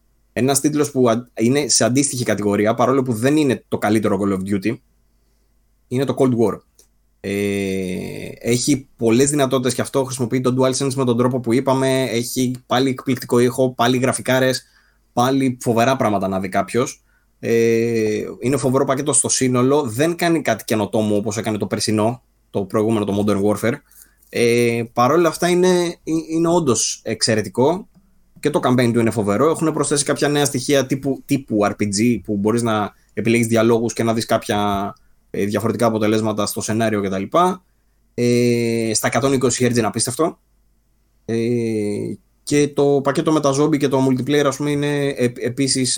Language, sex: Greek, male